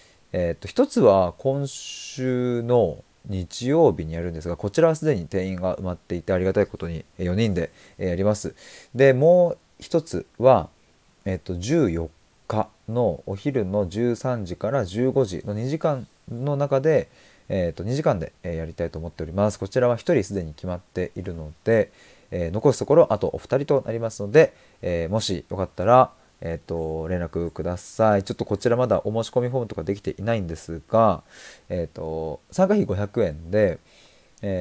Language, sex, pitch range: Japanese, male, 85-125 Hz